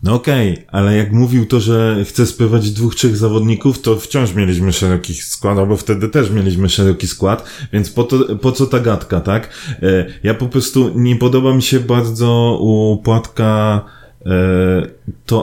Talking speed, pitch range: 165 wpm, 105-125 Hz